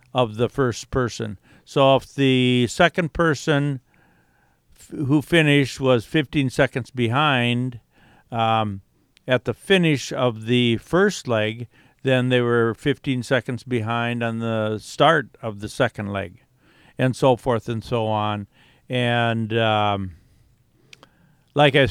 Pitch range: 115-135 Hz